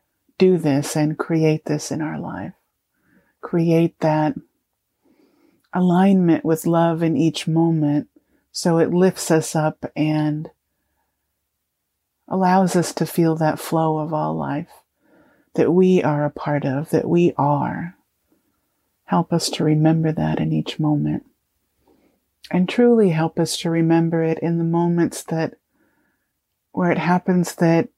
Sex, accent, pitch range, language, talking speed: female, American, 145-170 Hz, English, 135 wpm